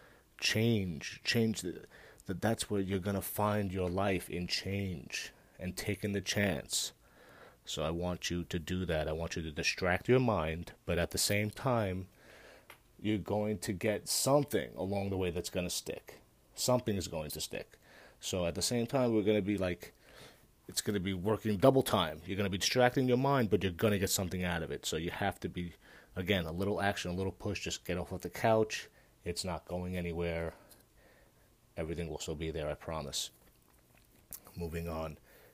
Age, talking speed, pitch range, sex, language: 30-49, 200 wpm, 90-110 Hz, male, English